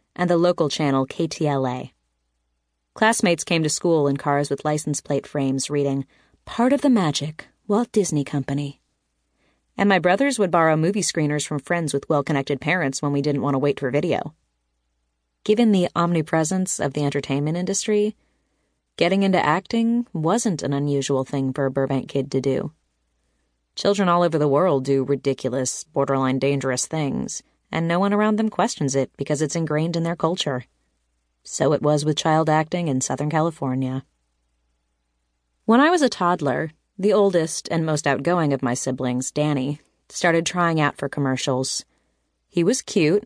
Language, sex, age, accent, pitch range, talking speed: English, female, 30-49, American, 135-175 Hz, 160 wpm